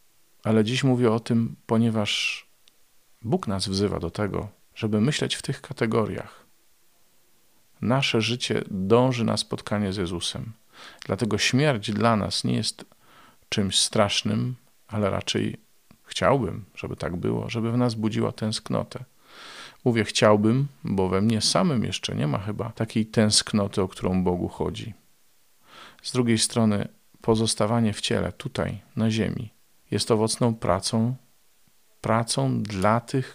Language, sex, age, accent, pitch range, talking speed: Polish, male, 40-59, native, 95-115 Hz, 135 wpm